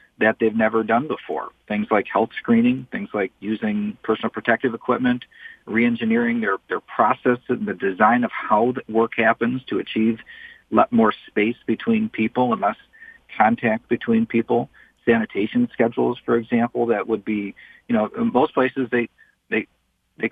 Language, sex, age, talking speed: English, male, 40-59, 155 wpm